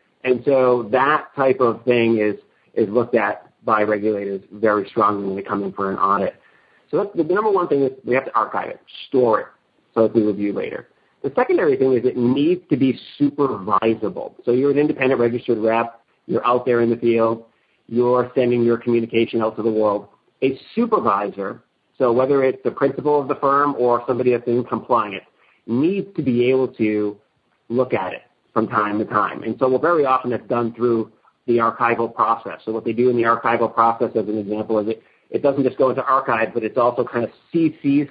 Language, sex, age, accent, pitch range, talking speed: English, male, 40-59, American, 110-130 Hz, 205 wpm